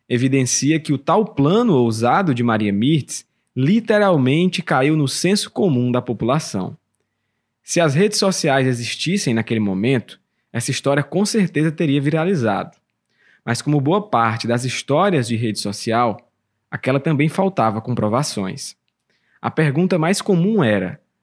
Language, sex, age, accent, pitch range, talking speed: English, male, 20-39, Brazilian, 120-180 Hz, 135 wpm